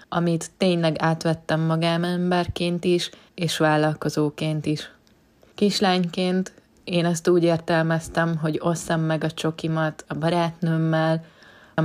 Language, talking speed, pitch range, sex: Hungarian, 110 wpm, 160-175 Hz, female